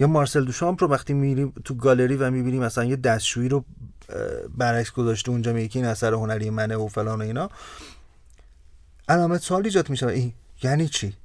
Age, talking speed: 40-59, 175 wpm